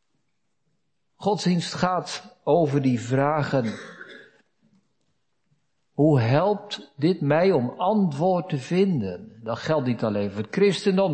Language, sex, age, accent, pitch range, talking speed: Dutch, male, 60-79, Dutch, 130-180 Hz, 110 wpm